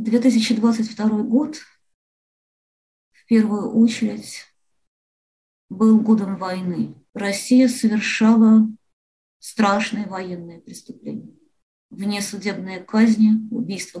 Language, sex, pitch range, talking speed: Russian, female, 195-230 Hz, 70 wpm